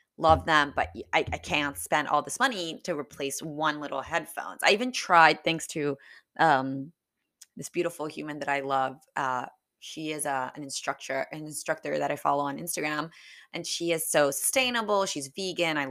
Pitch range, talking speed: 145-170 Hz, 180 wpm